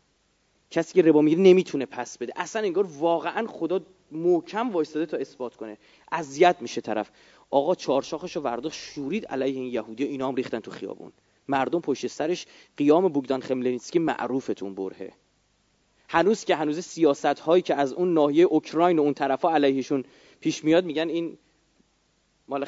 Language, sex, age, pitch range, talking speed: Persian, male, 30-49, 125-165 Hz, 155 wpm